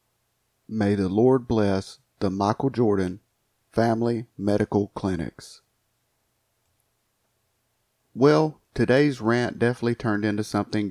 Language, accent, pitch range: English, American, 100-115 Hz